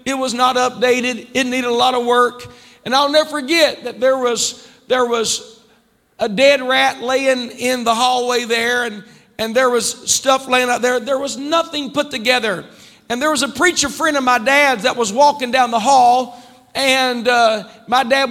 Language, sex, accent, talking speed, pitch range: English, male, American, 195 wpm, 250-275 Hz